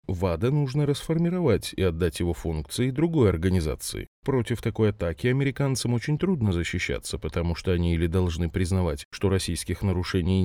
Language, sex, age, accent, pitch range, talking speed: Russian, male, 20-39, native, 90-125 Hz, 145 wpm